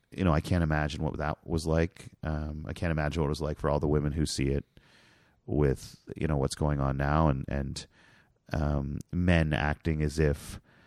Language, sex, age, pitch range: English, male, 30-49, 80-105 Hz